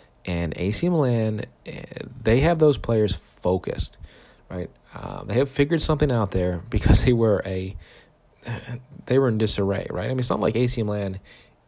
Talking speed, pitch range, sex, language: 160 wpm, 95-120 Hz, male, English